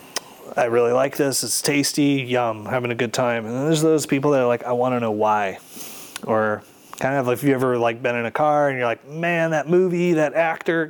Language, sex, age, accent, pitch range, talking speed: English, male, 30-49, American, 125-170 Hz, 240 wpm